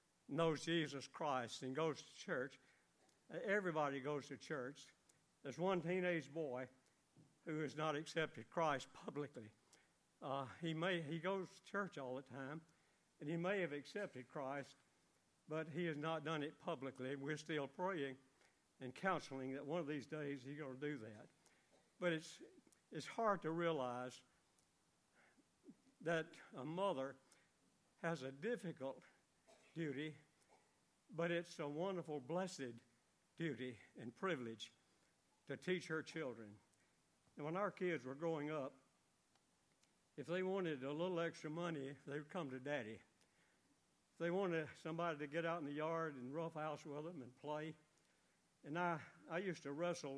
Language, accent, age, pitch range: English, American, 60-79, 135-170 Hz